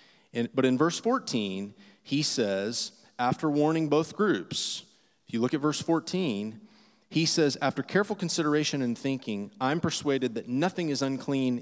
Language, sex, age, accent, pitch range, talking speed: English, male, 30-49, American, 125-160 Hz, 150 wpm